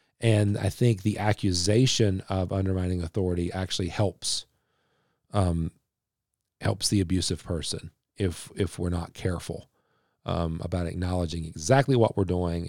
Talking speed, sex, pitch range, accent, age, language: 130 wpm, male, 95-120 Hz, American, 40-59, English